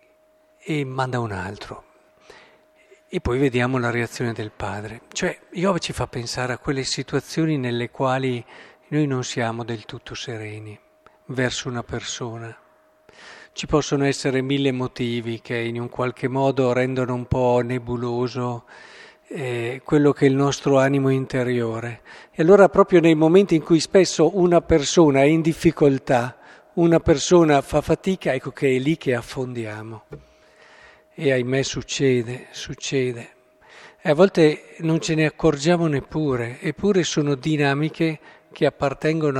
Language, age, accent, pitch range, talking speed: Italian, 50-69, native, 125-160 Hz, 140 wpm